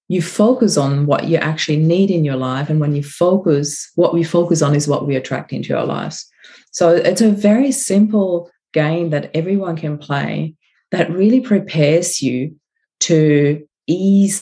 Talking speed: 170 wpm